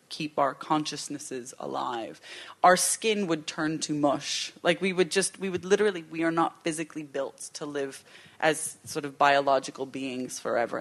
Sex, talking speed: female, 165 wpm